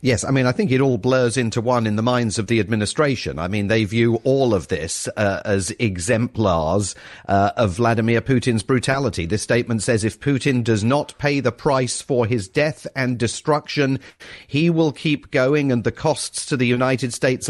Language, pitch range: English, 115-140 Hz